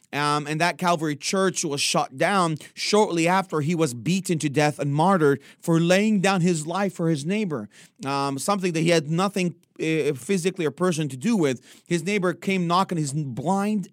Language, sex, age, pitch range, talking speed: English, male, 30-49, 140-175 Hz, 190 wpm